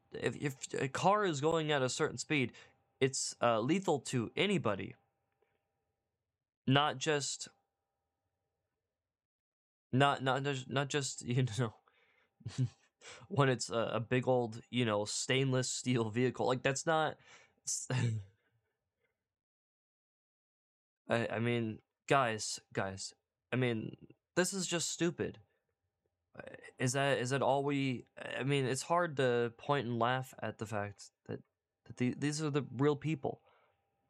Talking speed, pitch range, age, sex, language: 130 wpm, 115-145 Hz, 20-39, male, English